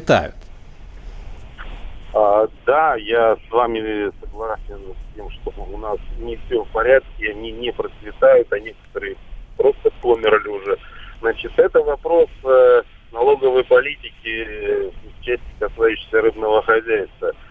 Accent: native